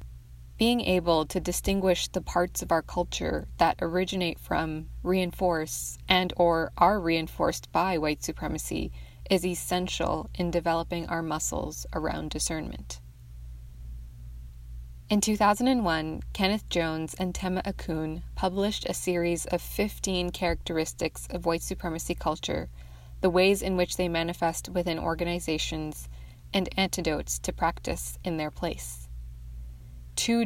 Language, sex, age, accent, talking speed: English, female, 20-39, American, 120 wpm